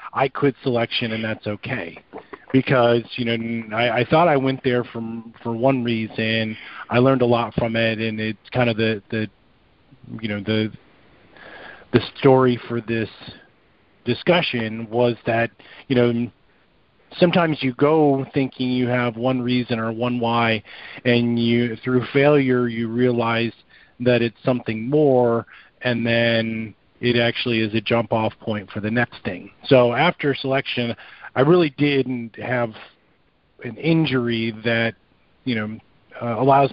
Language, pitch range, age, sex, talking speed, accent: English, 115-130 Hz, 40-59, male, 150 wpm, American